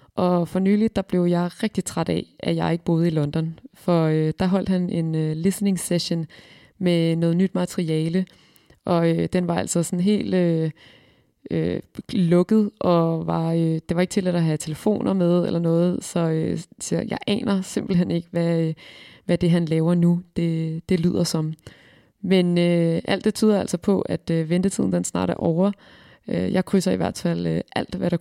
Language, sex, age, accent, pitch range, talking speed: Danish, female, 20-39, native, 165-195 Hz, 190 wpm